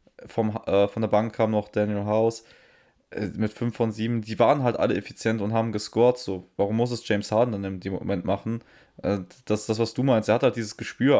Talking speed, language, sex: 225 wpm, German, male